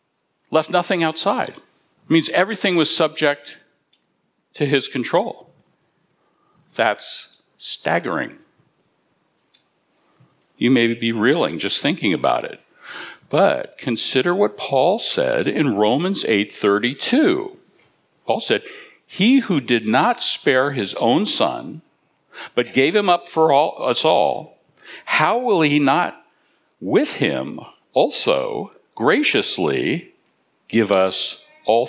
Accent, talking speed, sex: American, 105 wpm, male